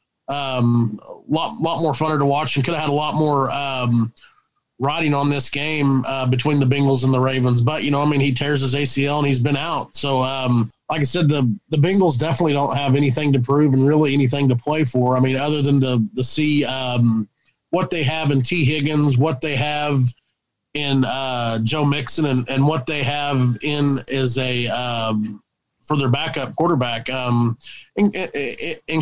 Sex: male